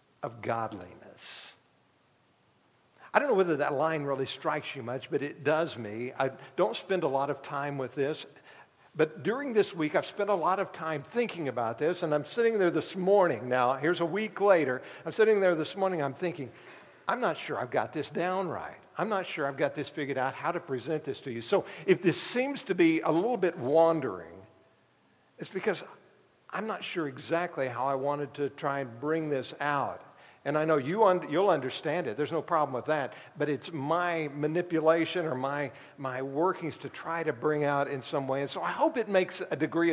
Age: 60-79